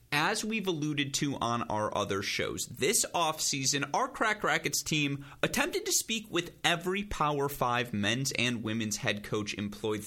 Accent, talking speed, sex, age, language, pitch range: American, 160 wpm, male, 30-49, English, 115-175 Hz